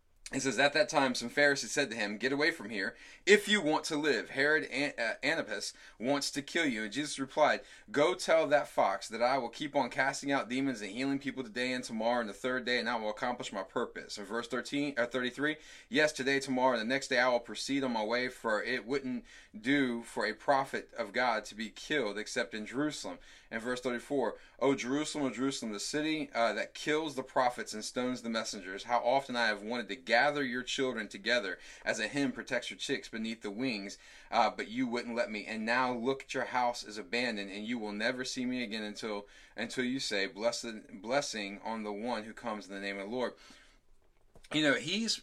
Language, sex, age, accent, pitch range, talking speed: English, male, 30-49, American, 110-135 Hz, 225 wpm